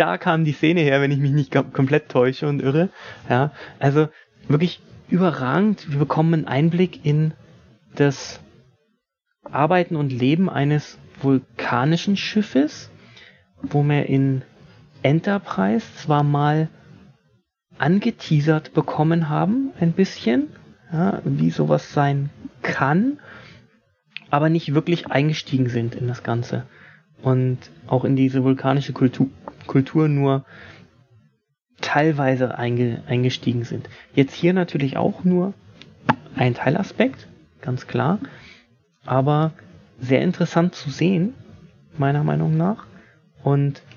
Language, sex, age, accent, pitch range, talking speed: German, male, 30-49, German, 130-165 Hz, 110 wpm